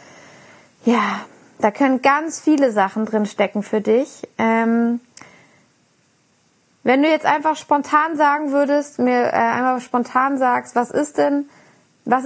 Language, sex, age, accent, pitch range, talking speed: German, female, 20-39, German, 225-275 Hz, 130 wpm